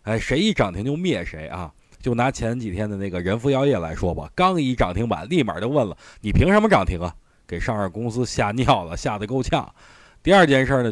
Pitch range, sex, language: 100-140 Hz, male, Chinese